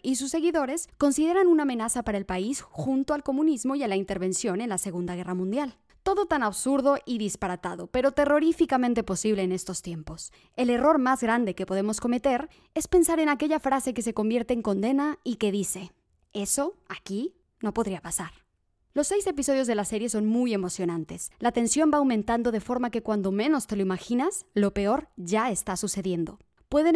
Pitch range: 205-280 Hz